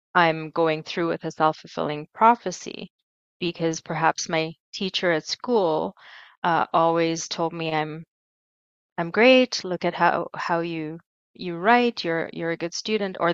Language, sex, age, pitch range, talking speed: English, female, 20-39, 165-190 Hz, 150 wpm